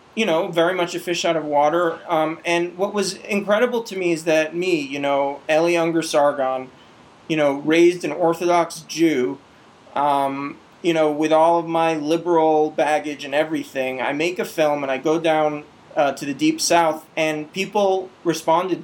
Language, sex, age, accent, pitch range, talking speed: English, male, 20-39, American, 140-170 Hz, 180 wpm